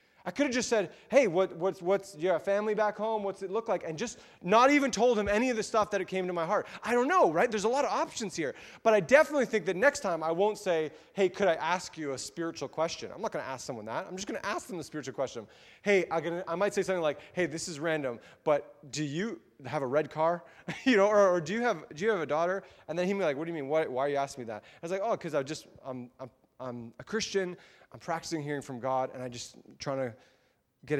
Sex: male